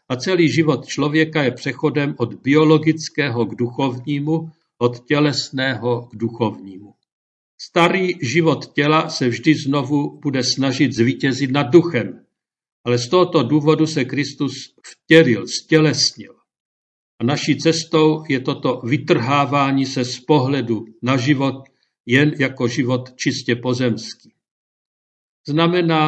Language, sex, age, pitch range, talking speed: Czech, male, 50-69, 125-155 Hz, 115 wpm